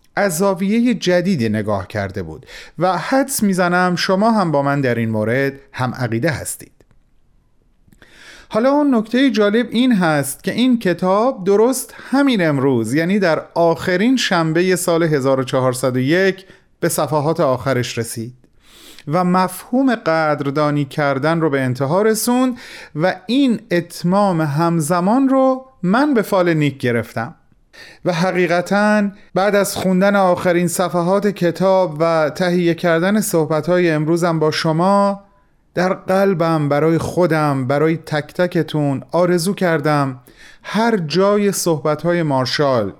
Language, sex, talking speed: Persian, male, 120 wpm